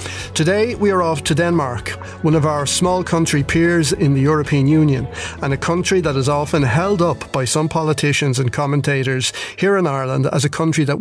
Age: 30-49